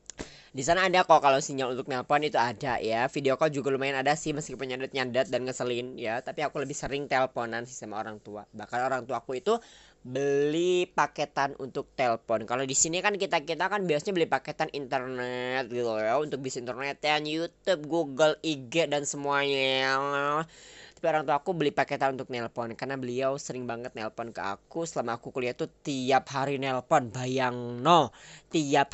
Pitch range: 125-165 Hz